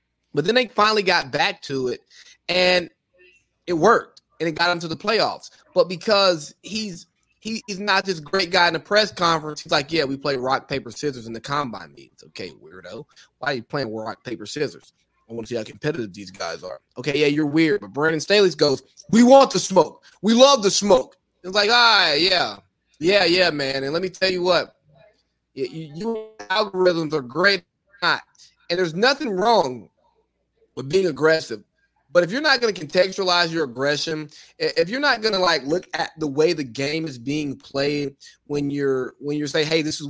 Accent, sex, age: American, male, 20-39